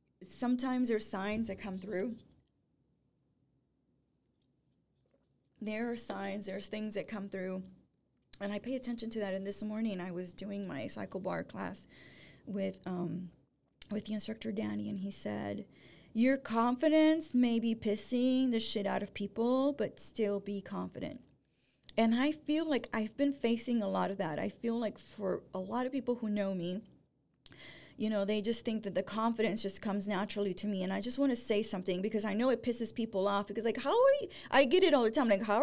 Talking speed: 190 wpm